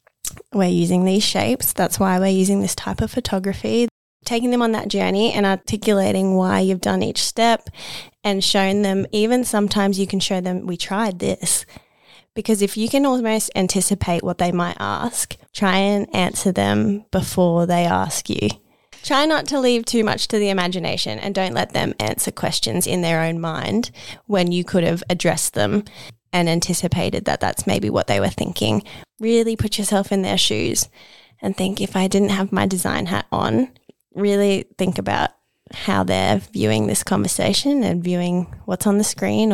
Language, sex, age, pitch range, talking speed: English, female, 20-39, 175-210 Hz, 180 wpm